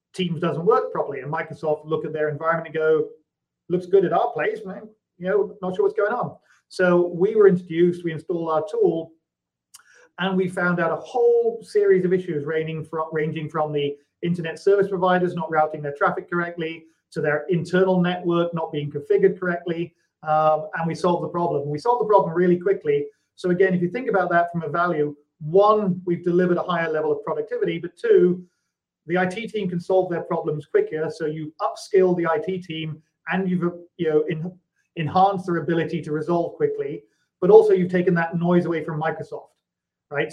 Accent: British